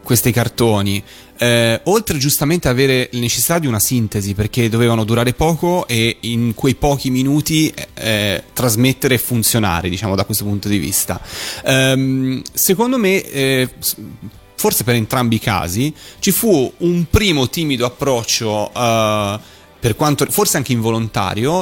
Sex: male